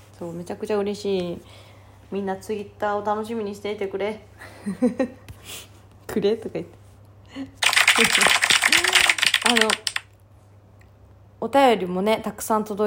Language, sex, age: Japanese, female, 20-39